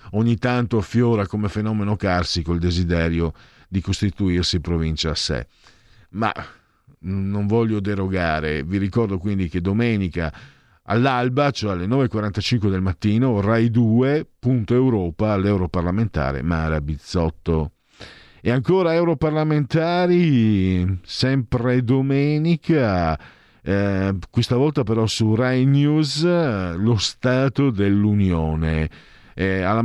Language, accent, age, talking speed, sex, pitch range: Italian, native, 50-69, 105 wpm, male, 90-130 Hz